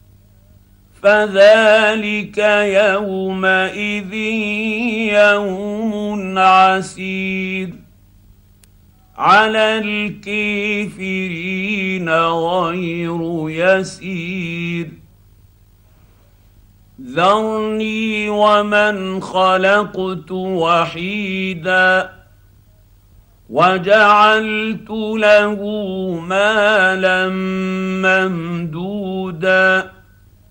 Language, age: Arabic, 50-69